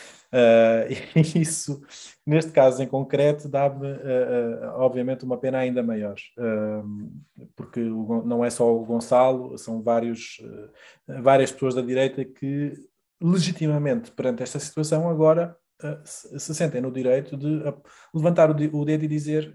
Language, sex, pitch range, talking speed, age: Portuguese, male, 120-145 Hz, 120 wpm, 20-39